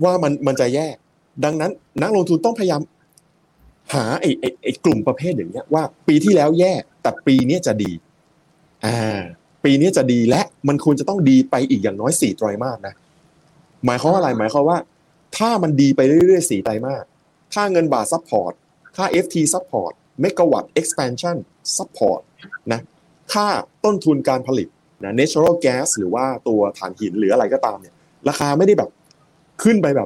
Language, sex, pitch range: Thai, male, 130-175 Hz